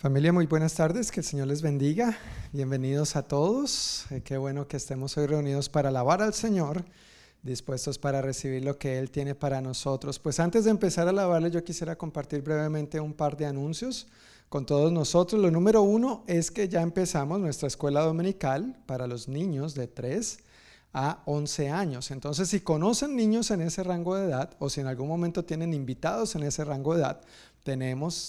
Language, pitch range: Spanish, 135-175 Hz